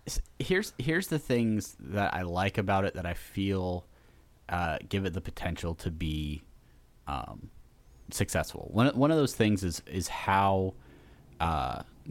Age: 30-49